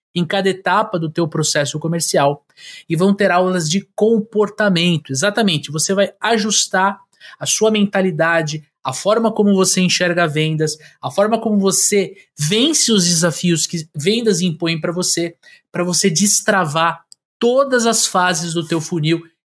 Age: 20-39